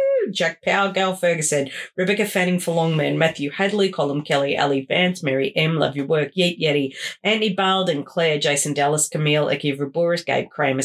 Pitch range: 145-175 Hz